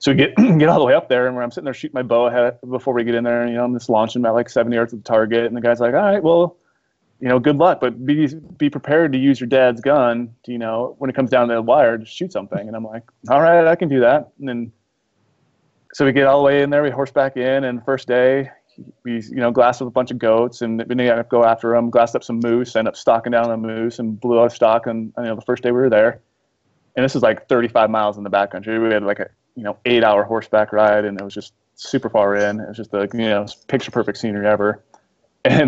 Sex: male